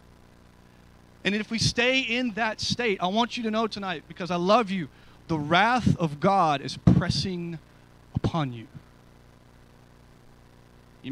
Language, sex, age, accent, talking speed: English, male, 30-49, American, 140 wpm